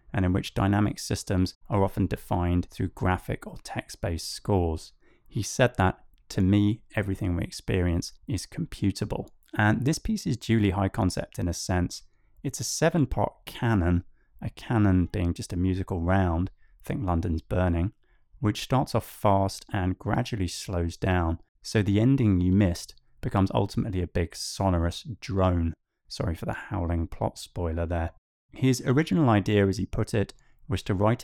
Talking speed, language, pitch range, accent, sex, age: 160 wpm, English, 90-110 Hz, British, male, 20-39